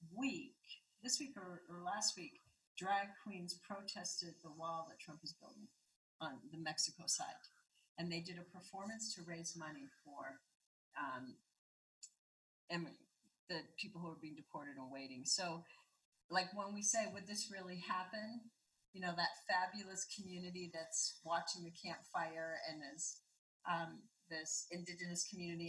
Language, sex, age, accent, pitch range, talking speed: English, female, 40-59, American, 170-220 Hz, 145 wpm